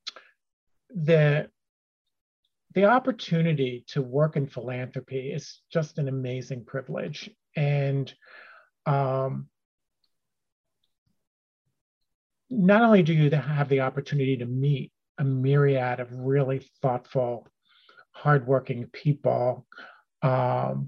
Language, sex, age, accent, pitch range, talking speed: English, male, 40-59, American, 130-155 Hz, 90 wpm